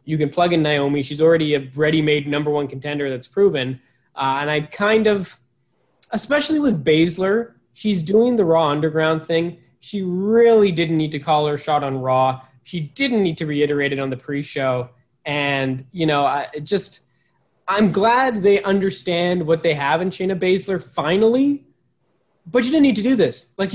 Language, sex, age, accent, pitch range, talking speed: English, male, 20-39, American, 140-190 Hz, 180 wpm